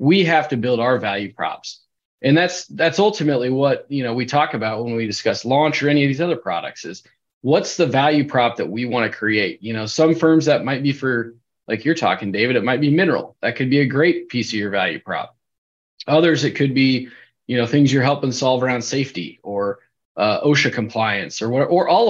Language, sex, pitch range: English, male, 115-145 Hz